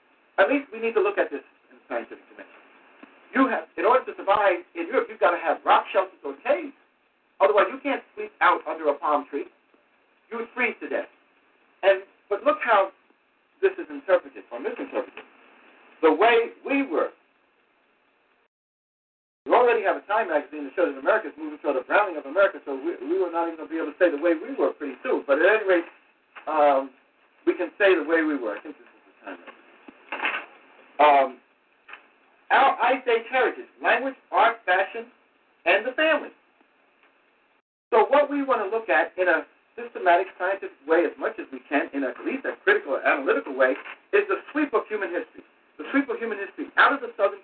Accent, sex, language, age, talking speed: American, male, English, 60-79, 200 wpm